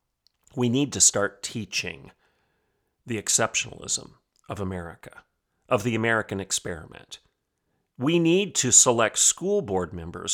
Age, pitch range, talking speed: 40-59, 120-160 Hz, 115 wpm